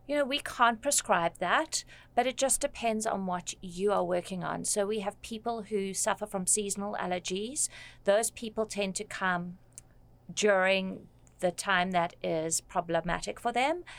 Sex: female